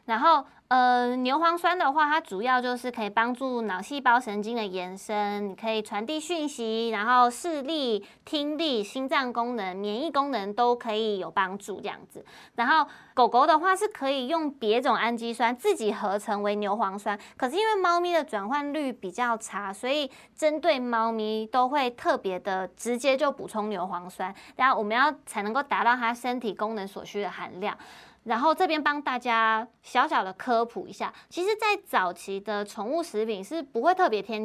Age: 20-39